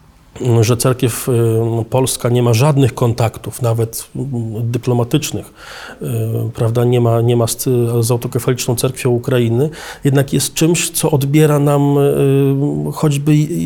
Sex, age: male, 40-59